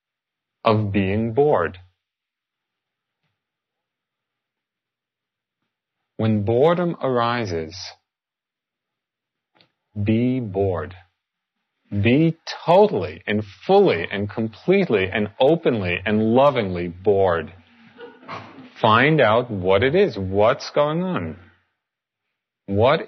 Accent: American